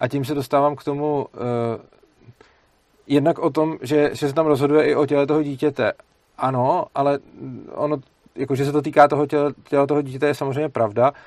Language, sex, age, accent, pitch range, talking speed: Czech, male, 40-59, native, 125-145 Hz, 185 wpm